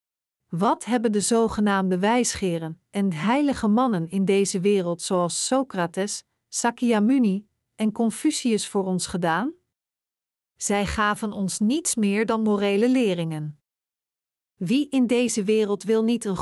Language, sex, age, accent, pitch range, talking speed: Dutch, female, 50-69, Dutch, 200-250 Hz, 125 wpm